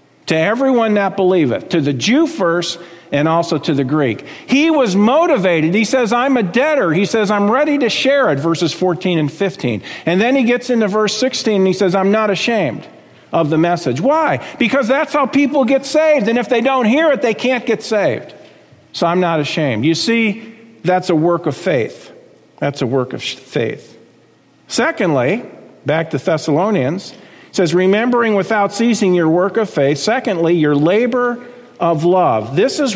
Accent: American